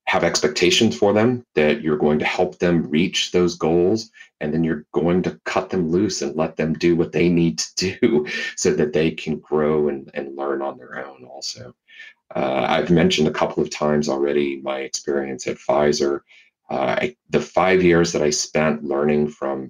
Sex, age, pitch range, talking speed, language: male, 30-49, 70-80 Hz, 195 wpm, English